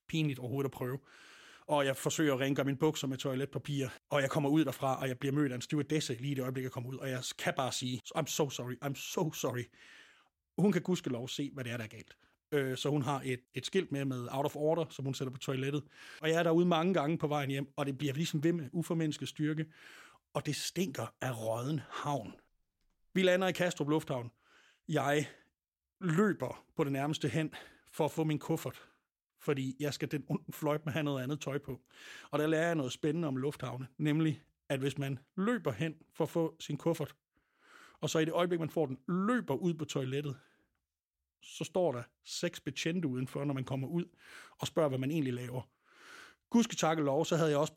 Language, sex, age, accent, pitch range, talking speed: Danish, male, 30-49, native, 135-160 Hz, 220 wpm